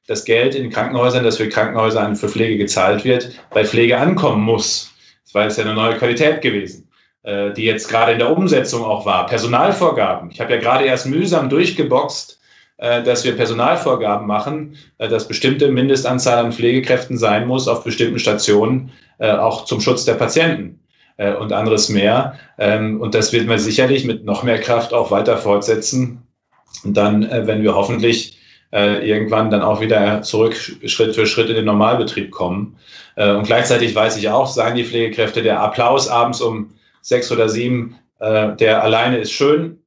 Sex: male